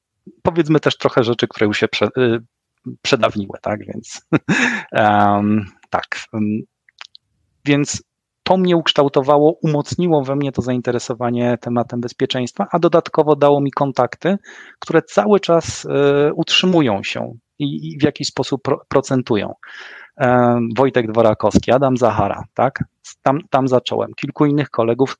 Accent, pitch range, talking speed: native, 120-145 Hz, 110 wpm